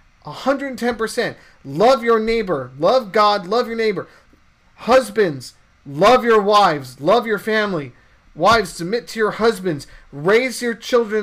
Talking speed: 130 wpm